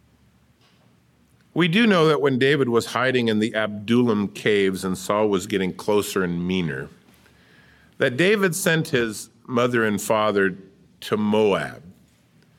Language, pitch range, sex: English, 100-145 Hz, male